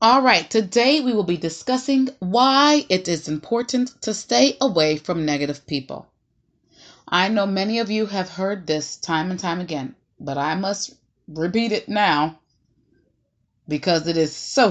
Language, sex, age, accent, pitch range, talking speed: English, female, 30-49, American, 150-250 Hz, 160 wpm